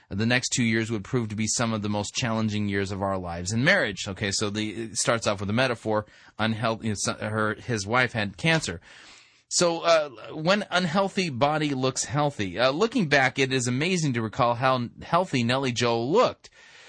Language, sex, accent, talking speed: English, male, American, 190 wpm